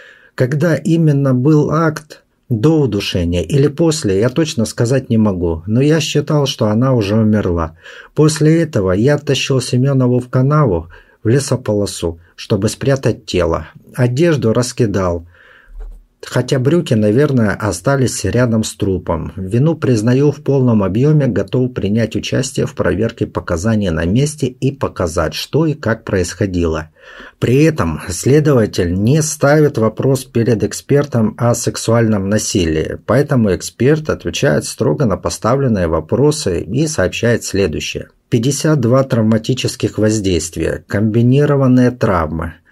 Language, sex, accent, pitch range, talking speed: Russian, male, native, 100-135 Hz, 120 wpm